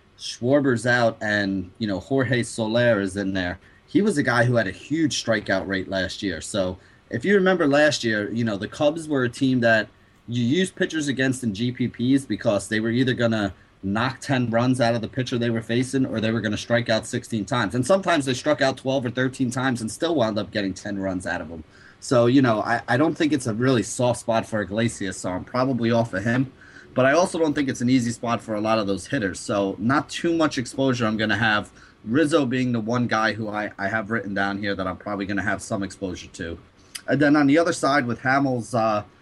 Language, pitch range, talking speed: English, 100-130 Hz, 240 wpm